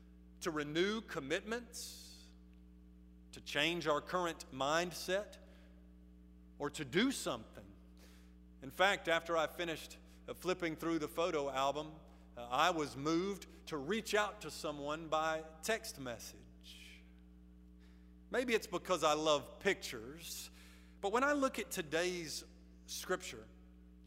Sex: male